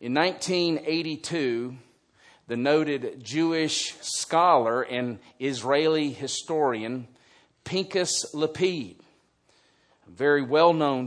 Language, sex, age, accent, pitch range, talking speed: English, male, 50-69, American, 140-185 Hz, 75 wpm